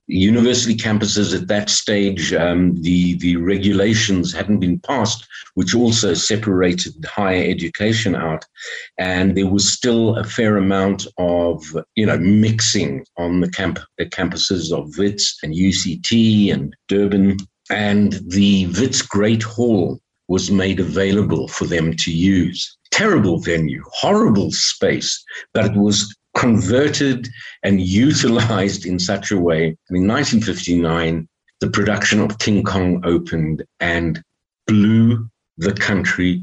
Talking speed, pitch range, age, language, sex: 130 wpm, 90-115 Hz, 50-69, English, male